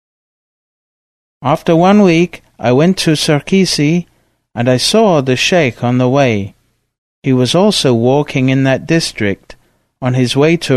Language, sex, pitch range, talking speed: English, male, 115-150 Hz, 145 wpm